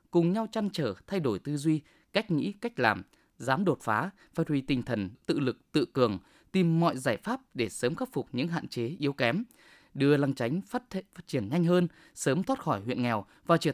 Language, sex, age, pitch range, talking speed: Vietnamese, male, 20-39, 125-195 Hz, 225 wpm